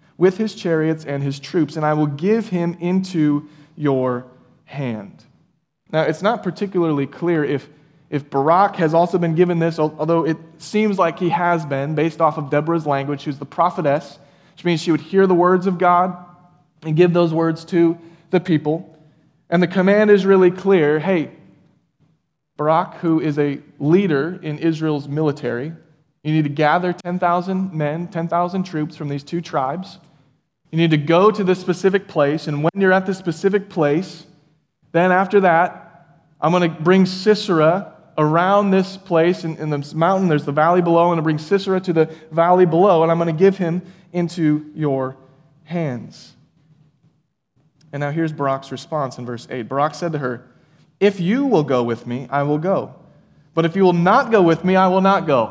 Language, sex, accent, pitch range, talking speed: English, male, American, 150-180 Hz, 185 wpm